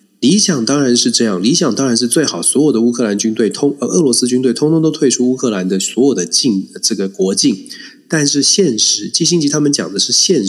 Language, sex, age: Chinese, male, 30-49